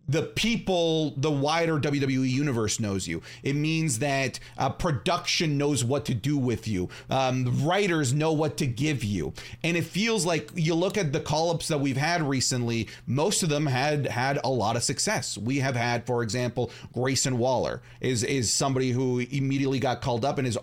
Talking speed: 190 wpm